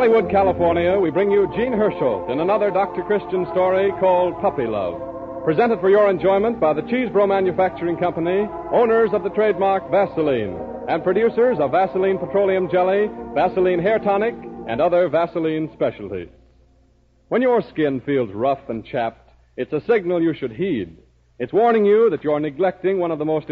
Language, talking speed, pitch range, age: English, 170 wpm, 135-195 Hz, 60-79